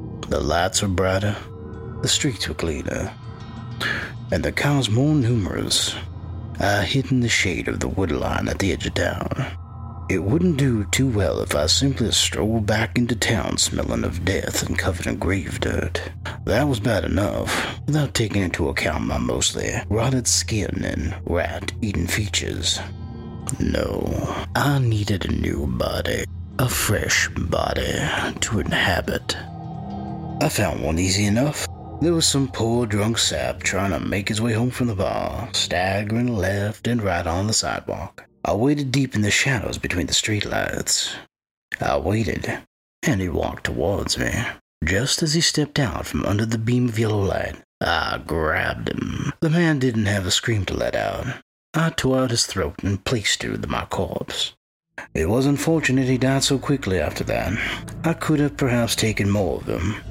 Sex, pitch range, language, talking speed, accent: male, 95-125 Hz, English, 170 wpm, American